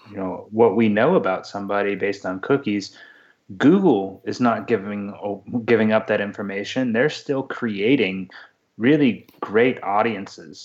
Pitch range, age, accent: 100-115 Hz, 20-39, American